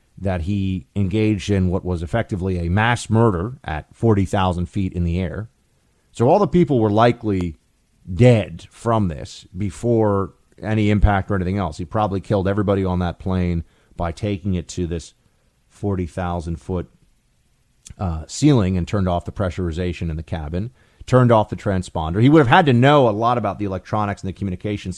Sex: male